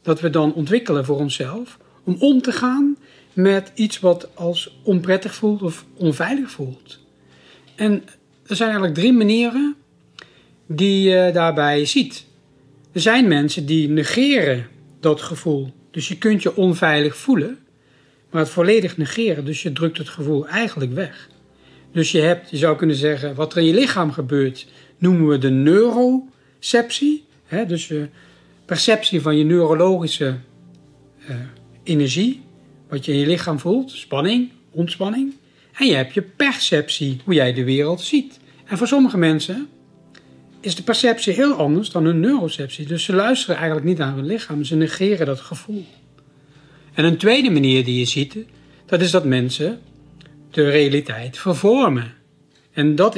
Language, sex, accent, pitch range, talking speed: Dutch, male, Dutch, 145-200 Hz, 150 wpm